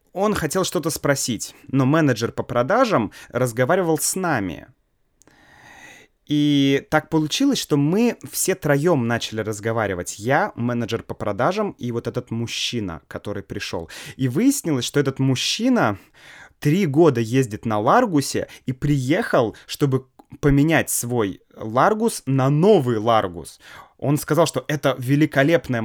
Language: Russian